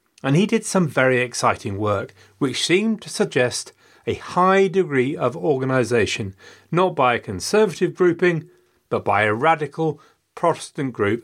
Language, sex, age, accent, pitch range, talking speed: English, male, 40-59, British, 110-155 Hz, 145 wpm